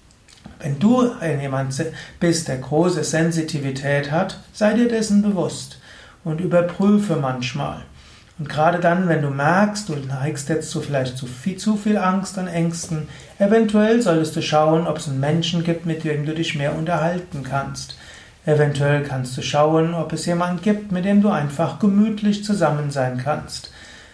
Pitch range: 145-185 Hz